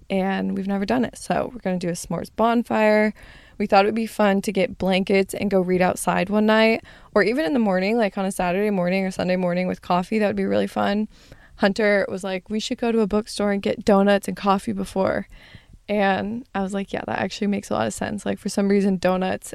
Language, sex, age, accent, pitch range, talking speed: English, female, 20-39, American, 185-210 Hz, 240 wpm